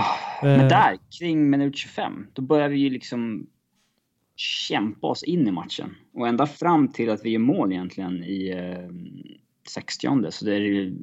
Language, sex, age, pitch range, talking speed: English, male, 20-39, 95-125 Hz, 160 wpm